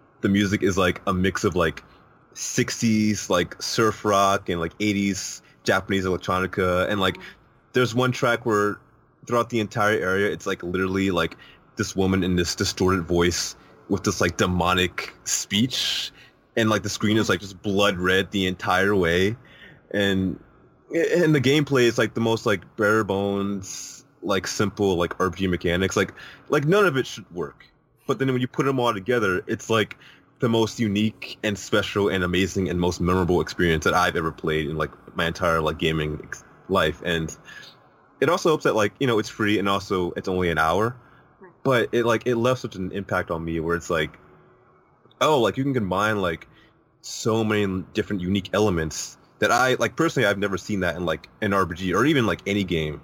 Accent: American